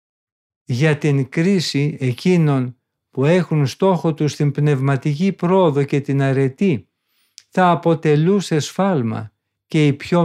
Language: Greek